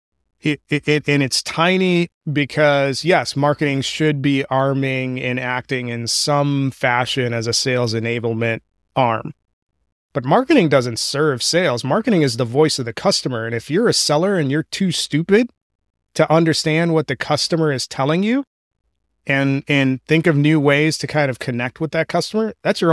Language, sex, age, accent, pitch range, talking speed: English, male, 30-49, American, 125-155 Hz, 165 wpm